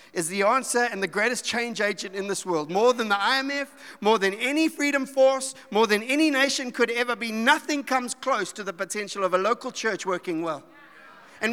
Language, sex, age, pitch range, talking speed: English, male, 50-69, 215-265 Hz, 210 wpm